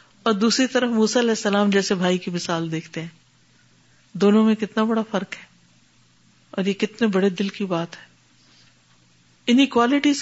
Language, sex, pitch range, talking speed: Urdu, female, 185-240 Hz, 165 wpm